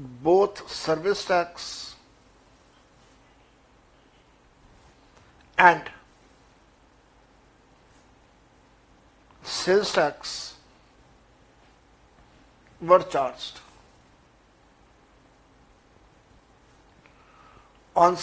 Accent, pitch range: native, 165-190 Hz